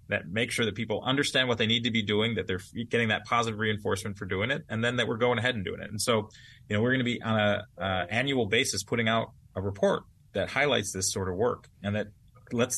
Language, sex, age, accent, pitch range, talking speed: English, male, 30-49, American, 100-125 Hz, 260 wpm